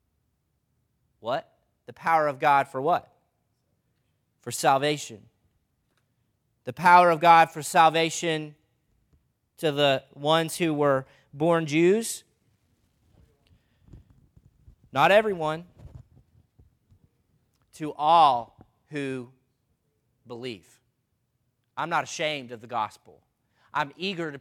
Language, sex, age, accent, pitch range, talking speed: English, male, 30-49, American, 135-195 Hz, 90 wpm